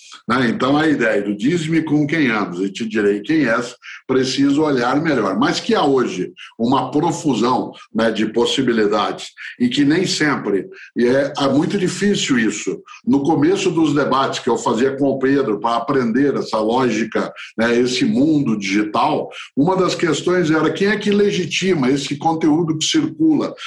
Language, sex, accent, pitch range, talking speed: Portuguese, male, Brazilian, 140-185 Hz, 165 wpm